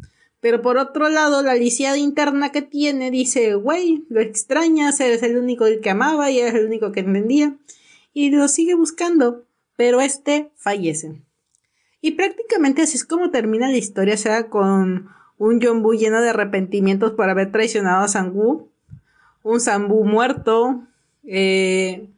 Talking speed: 155 wpm